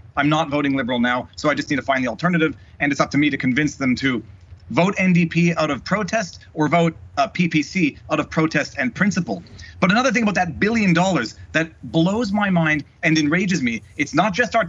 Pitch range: 155-200 Hz